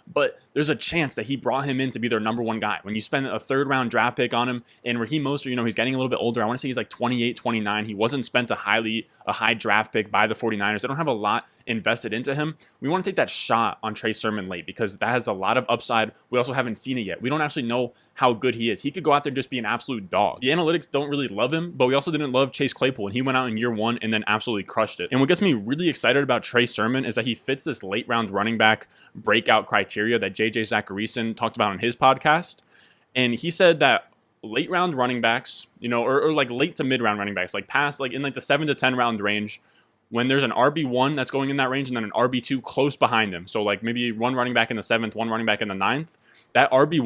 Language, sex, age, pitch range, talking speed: English, male, 20-39, 115-135 Hz, 280 wpm